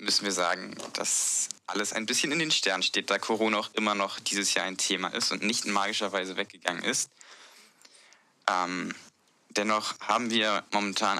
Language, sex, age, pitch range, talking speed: German, male, 20-39, 95-110 Hz, 175 wpm